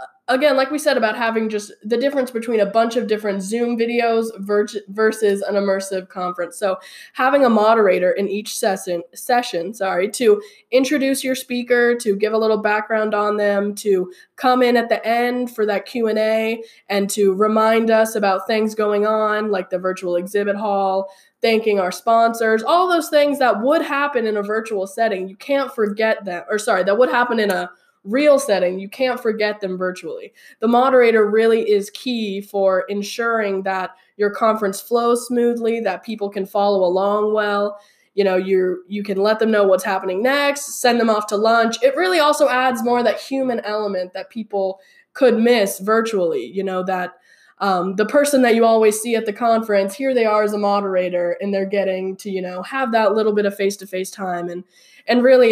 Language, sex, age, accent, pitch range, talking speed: English, female, 10-29, American, 195-240 Hz, 190 wpm